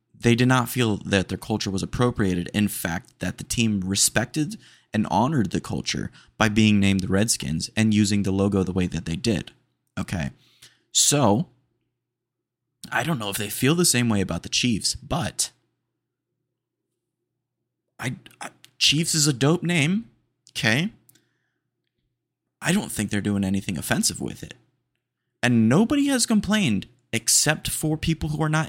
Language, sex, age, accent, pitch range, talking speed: English, male, 20-39, American, 100-135 Hz, 155 wpm